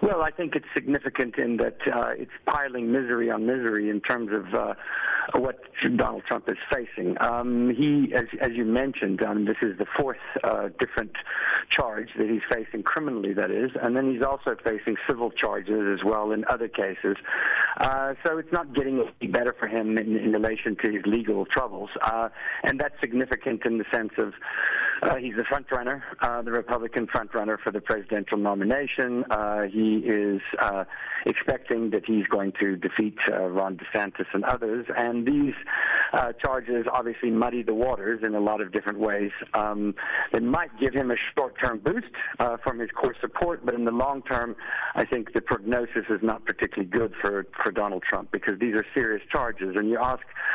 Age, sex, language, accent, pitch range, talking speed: 50-69, male, English, American, 110-130 Hz, 185 wpm